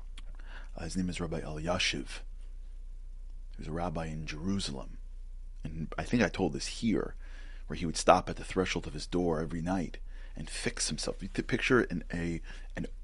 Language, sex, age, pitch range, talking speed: English, male, 30-49, 65-100 Hz, 185 wpm